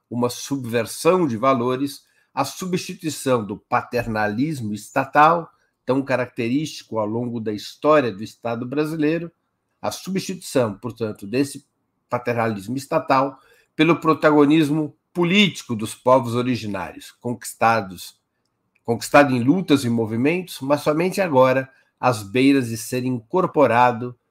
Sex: male